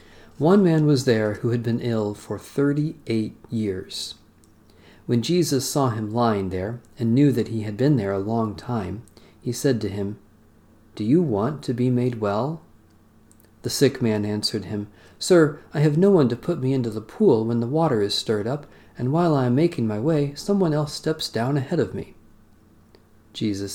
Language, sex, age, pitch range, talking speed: English, male, 40-59, 105-130 Hz, 190 wpm